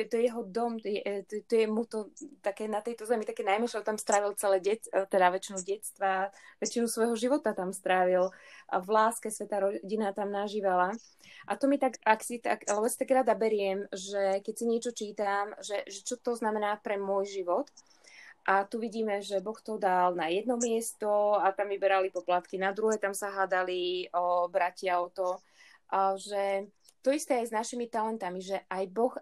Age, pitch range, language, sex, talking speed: 20-39, 195-225 Hz, Slovak, female, 195 wpm